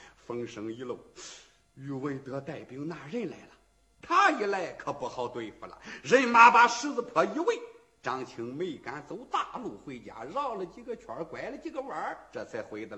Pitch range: 200-305 Hz